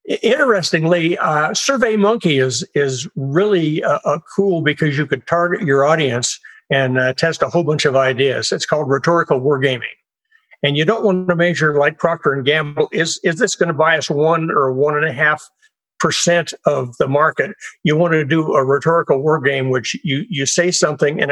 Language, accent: English, American